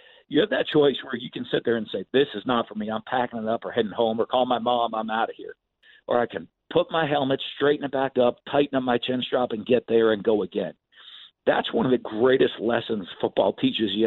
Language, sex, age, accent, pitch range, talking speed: English, male, 50-69, American, 115-135 Hz, 260 wpm